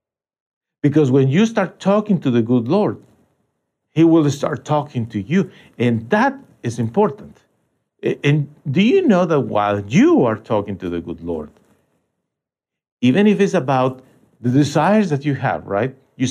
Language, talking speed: English, 160 wpm